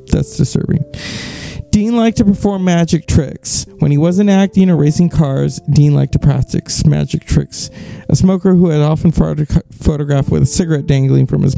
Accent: American